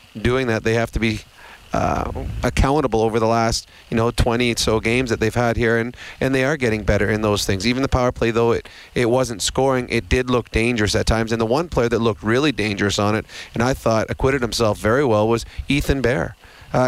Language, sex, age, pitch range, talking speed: English, male, 30-49, 115-130 Hz, 235 wpm